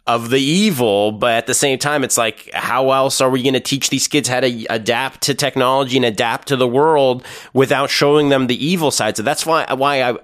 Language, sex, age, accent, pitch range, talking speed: English, male, 30-49, American, 110-140 Hz, 235 wpm